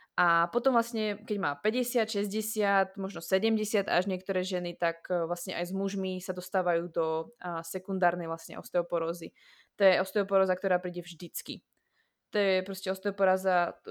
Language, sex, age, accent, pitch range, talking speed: Czech, female, 20-39, native, 180-205 Hz, 140 wpm